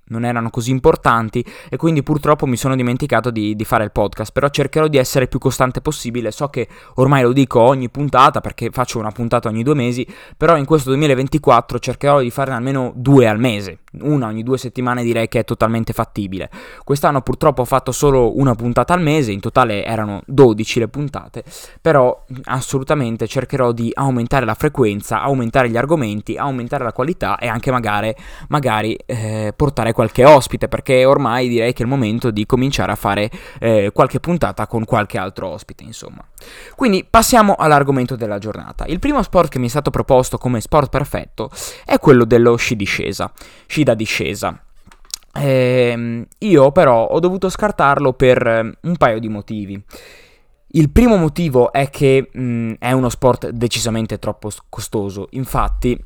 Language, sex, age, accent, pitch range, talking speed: Italian, male, 20-39, native, 115-135 Hz, 170 wpm